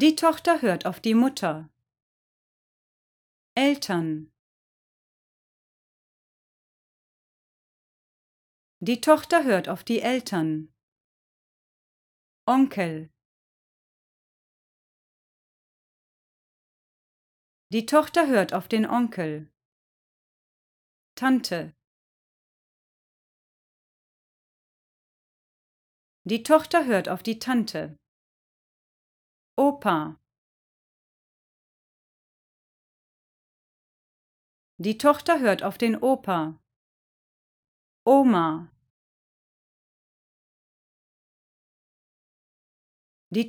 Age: 40-59